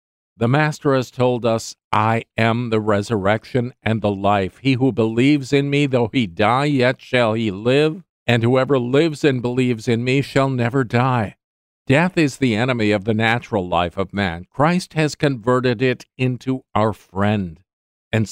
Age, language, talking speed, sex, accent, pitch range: 50-69, English, 170 wpm, male, American, 110-145 Hz